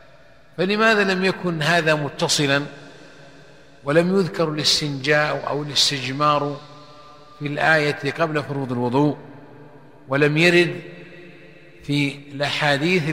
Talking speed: 85 wpm